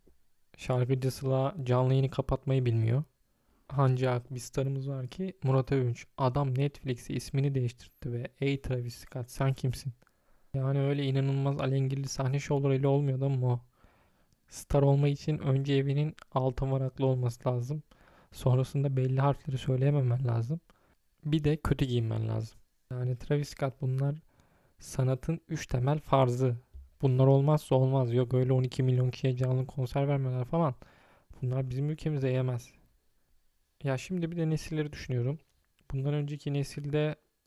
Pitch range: 125-140 Hz